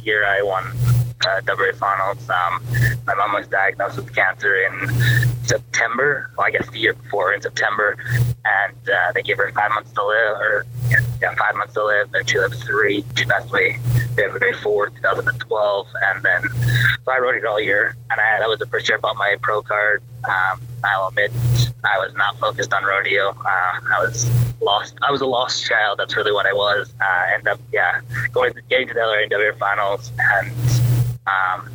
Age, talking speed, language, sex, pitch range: 20-39, 200 wpm, English, male, 105-120 Hz